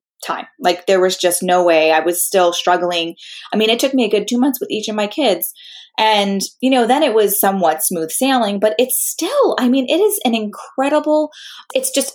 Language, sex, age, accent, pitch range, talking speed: English, female, 20-39, American, 180-245 Hz, 220 wpm